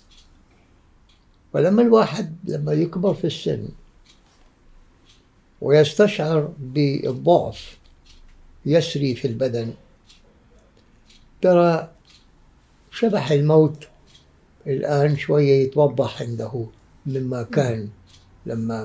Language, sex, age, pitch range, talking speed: Arabic, male, 60-79, 95-160 Hz, 65 wpm